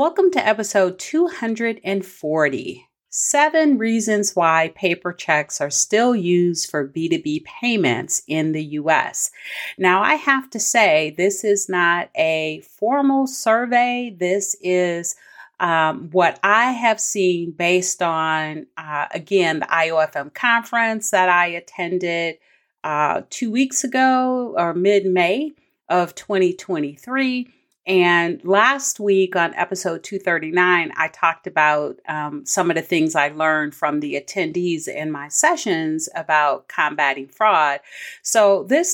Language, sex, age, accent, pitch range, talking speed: English, female, 40-59, American, 160-225 Hz, 125 wpm